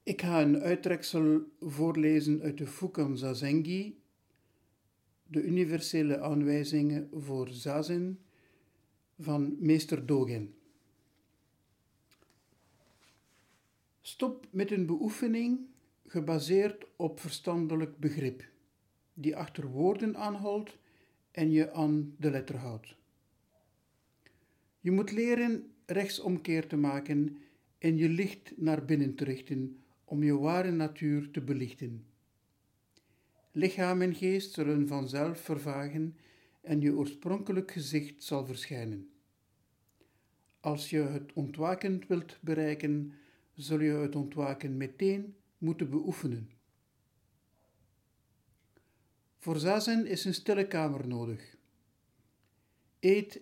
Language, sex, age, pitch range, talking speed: Dutch, male, 60-79, 135-170 Hz, 100 wpm